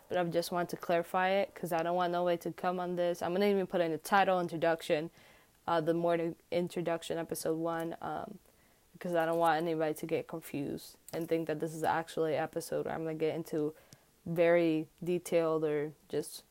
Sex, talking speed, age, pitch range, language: female, 215 wpm, 10-29, 165-190 Hz, English